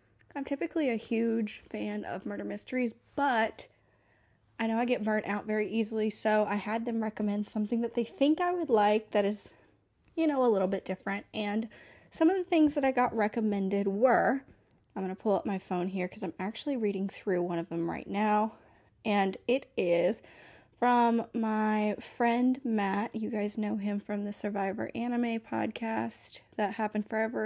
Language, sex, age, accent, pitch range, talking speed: English, female, 10-29, American, 200-245 Hz, 185 wpm